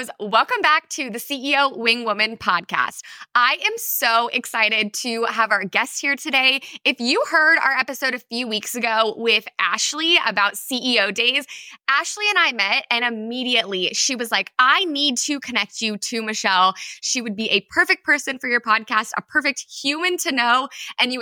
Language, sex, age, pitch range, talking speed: English, female, 20-39, 220-285 Hz, 180 wpm